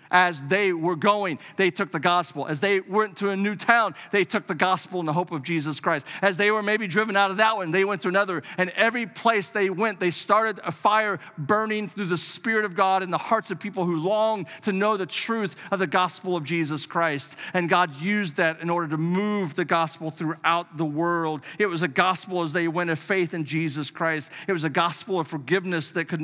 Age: 50-69